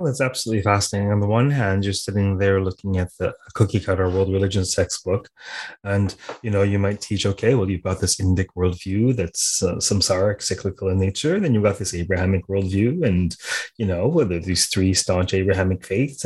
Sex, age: male, 30-49